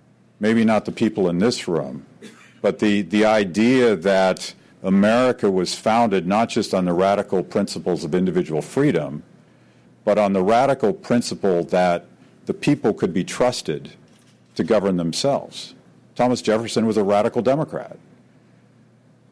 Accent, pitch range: American, 85-115 Hz